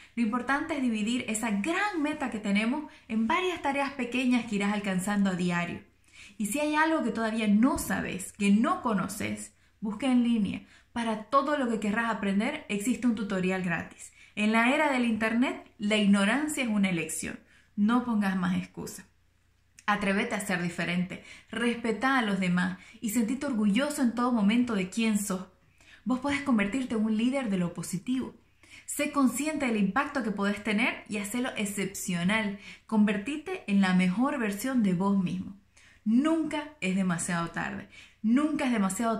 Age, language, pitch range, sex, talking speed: 20-39, Spanish, 195-250 Hz, female, 165 wpm